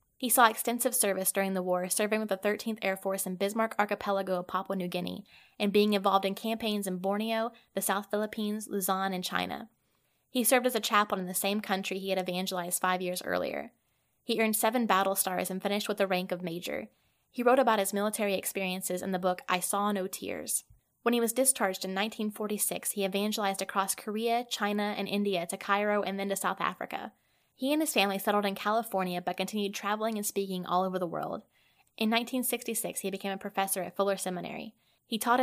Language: English